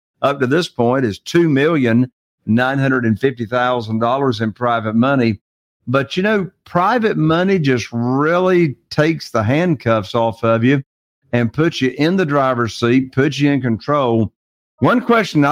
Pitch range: 120-155 Hz